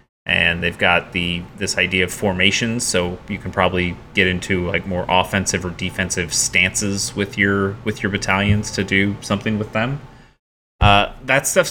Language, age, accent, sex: English, 30-49, American, male